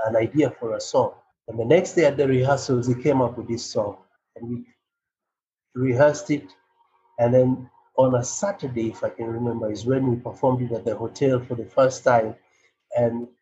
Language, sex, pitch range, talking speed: Swahili, male, 125-145 Hz, 195 wpm